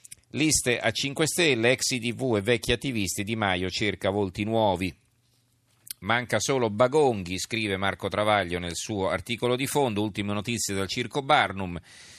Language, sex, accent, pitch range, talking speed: Italian, male, native, 95-115 Hz, 145 wpm